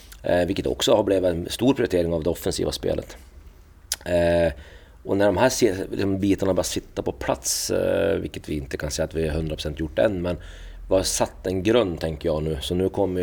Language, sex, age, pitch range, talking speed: Swedish, male, 30-49, 80-90 Hz, 220 wpm